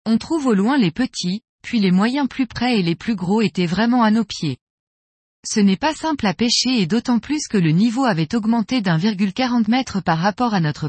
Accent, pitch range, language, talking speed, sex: French, 185-250 Hz, French, 220 wpm, female